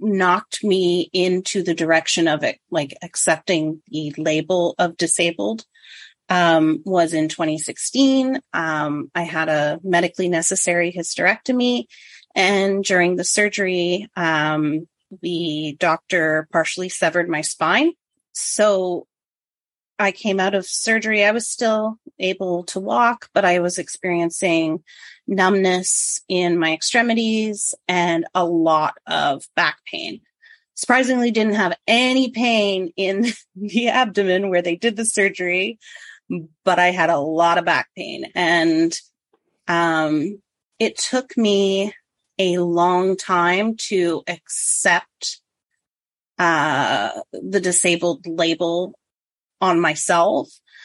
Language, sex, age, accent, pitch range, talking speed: English, female, 30-49, American, 170-215 Hz, 115 wpm